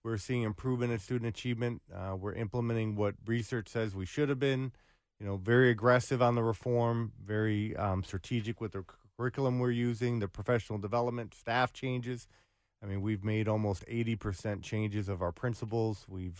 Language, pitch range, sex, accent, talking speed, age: English, 105-120 Hz, male, American, 170 wpm, 30-49